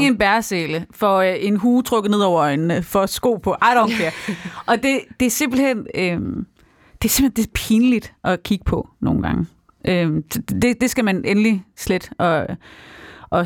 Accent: native